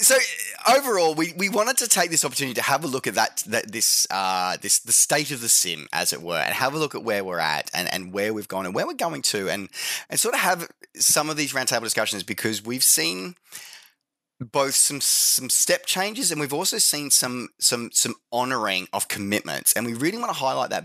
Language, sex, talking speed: English, male, 230 wpm